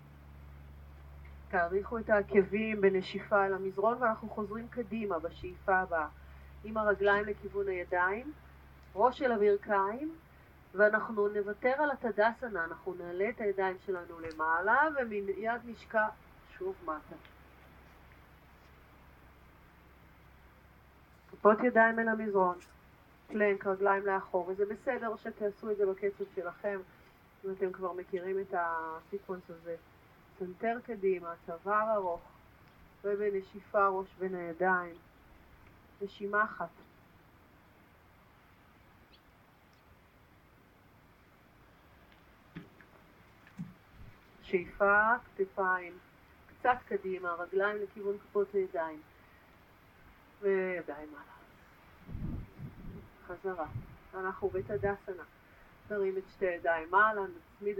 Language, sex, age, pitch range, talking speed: Hebrew, female, 30-49, 165-210 Hz, 85 wpm